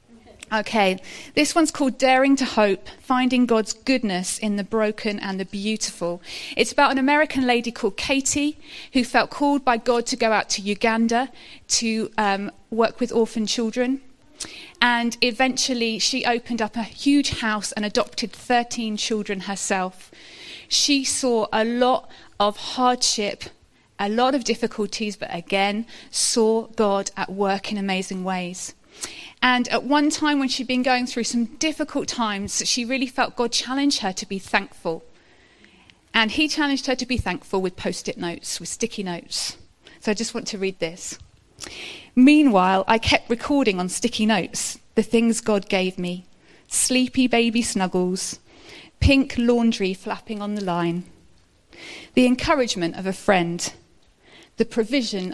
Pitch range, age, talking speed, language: 205-255 Hz, 30-49, 150 wpm, English